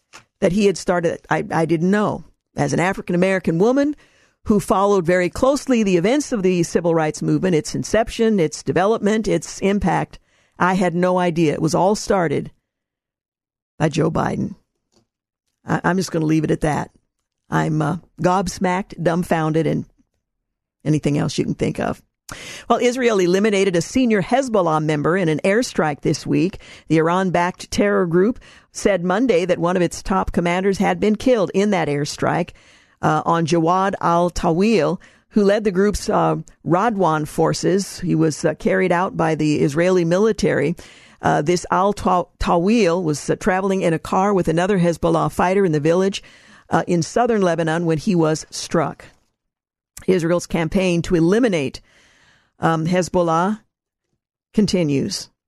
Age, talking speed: 50-69, 150 wpm